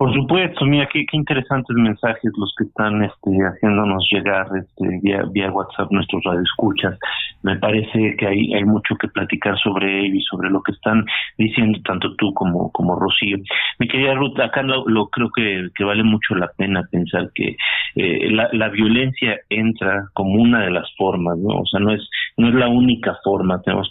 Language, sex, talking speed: Spanish, male, 185 wpm